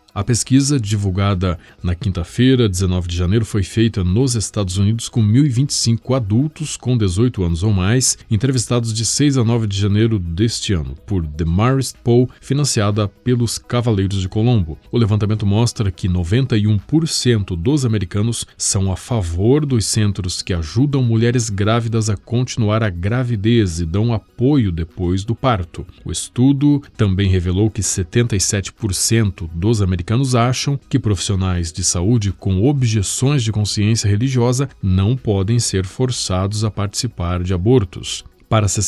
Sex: male